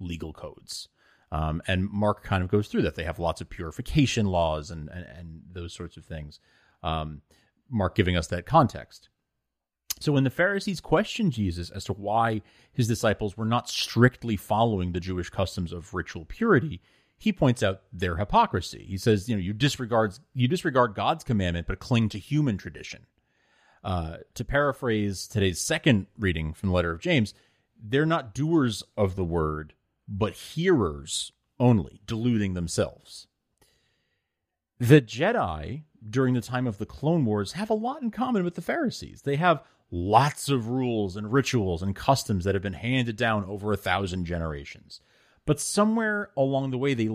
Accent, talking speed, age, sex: American, 170 wpm, 30-49, male